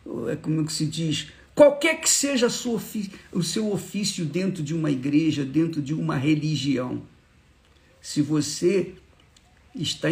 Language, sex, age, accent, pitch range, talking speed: Portuguese, male, 50-69, Brazilian, 145-185 Hz, 130 wpm